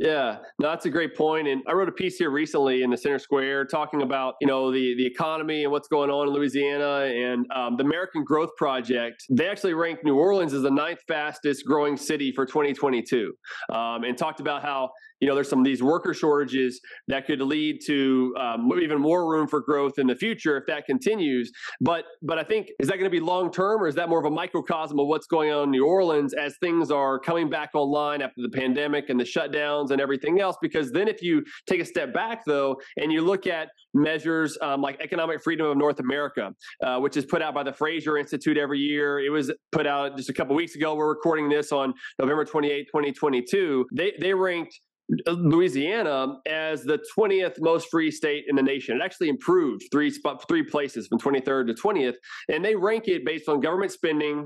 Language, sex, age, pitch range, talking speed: English, male, 30-49, 135-160 Hz, 220 wpm